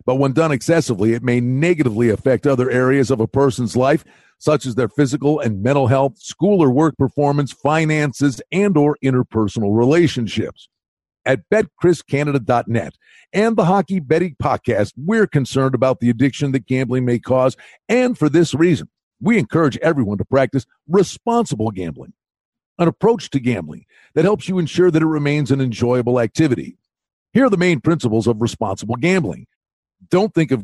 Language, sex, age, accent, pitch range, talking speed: English, male, 50-69, American, 120-165 Hz, 160 wpm